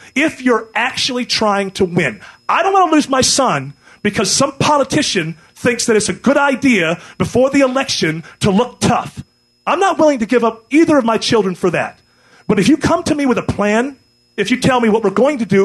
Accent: American